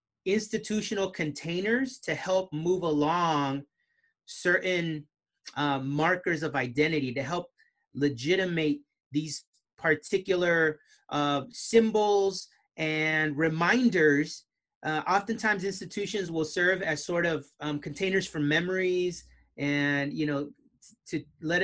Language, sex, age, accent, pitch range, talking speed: English, male, 30-49, American, 155-195 Hz, 105 wpm